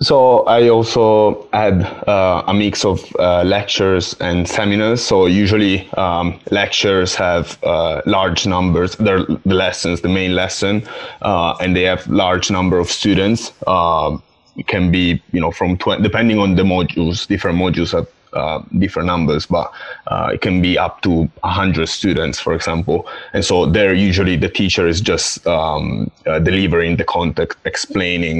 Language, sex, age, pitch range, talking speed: English, male, 20-39, 85-95 Hz, 165 wpm